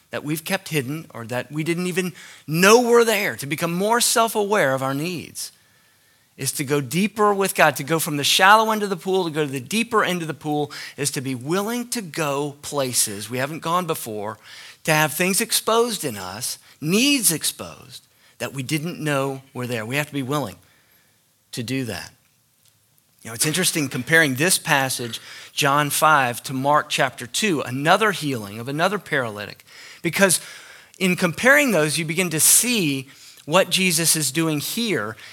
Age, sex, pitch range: 40-59, male, 135-175 Hz